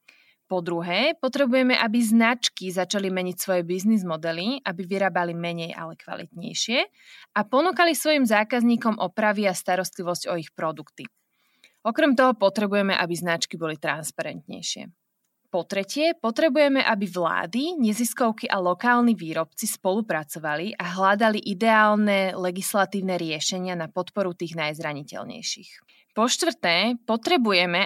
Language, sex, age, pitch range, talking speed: Slovak, female, 20-39, 175-225 Hz, 115 wpm